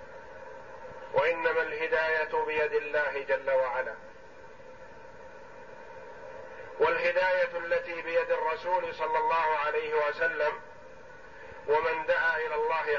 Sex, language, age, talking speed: male, Arabic, 50-69, 85 wpm